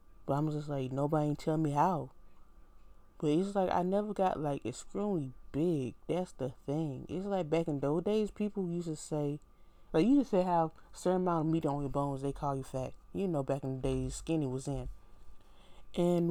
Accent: American